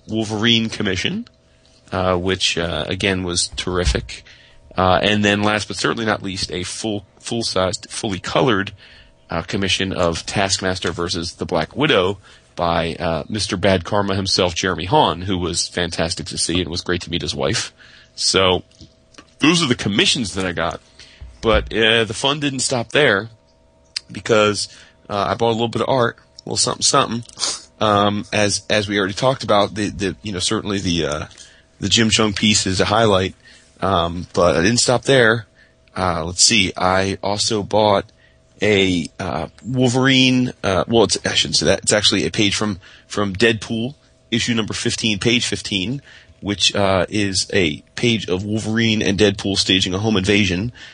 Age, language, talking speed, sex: 30-49, English, 170 wpm, male